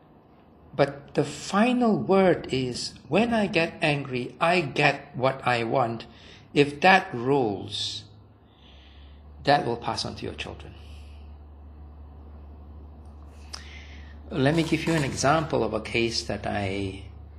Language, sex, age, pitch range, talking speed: English, male, 60-79, 75-120 Hz, 120 wpm